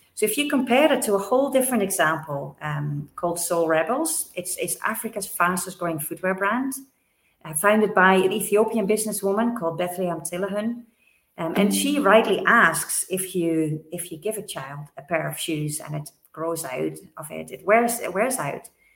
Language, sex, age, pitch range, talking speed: English, female, 30-49, 170-220 Hz, 180 wpm